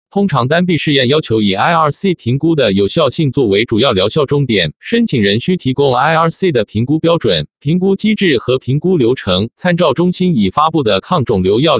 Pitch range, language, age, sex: 120-170 Hz, Chinese, 50-69, male